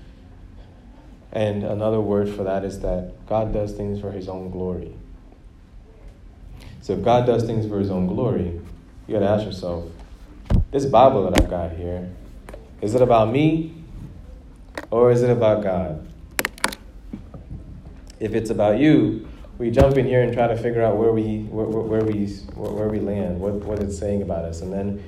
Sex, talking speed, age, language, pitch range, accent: male, 165 wpm, 20-39, English, 90-110 Hz, American